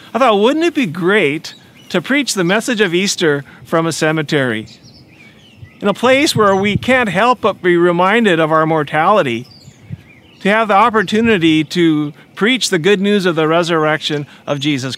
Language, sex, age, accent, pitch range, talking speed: English, male, 40-59, American, 145-200 Hz, 170 wpm